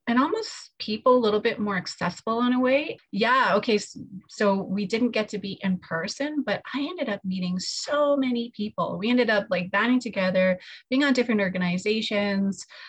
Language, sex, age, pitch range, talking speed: English, female, 30-49, 180-215 Hz, 185 wpm